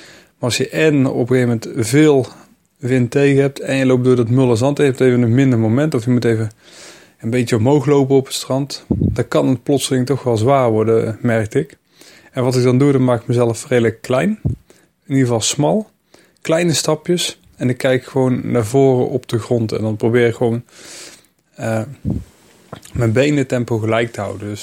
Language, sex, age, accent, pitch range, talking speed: Dutch, male, 20-39, Dutch, 115-135 Hz, 205 wpm